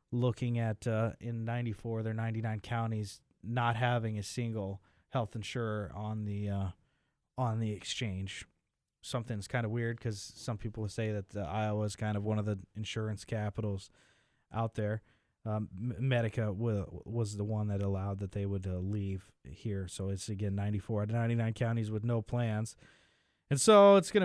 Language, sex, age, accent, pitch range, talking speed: English, male, 20-39, American, 105-125 Hz, 175 wpm